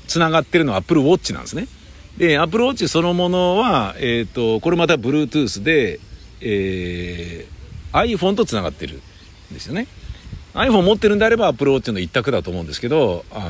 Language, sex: Japanese, male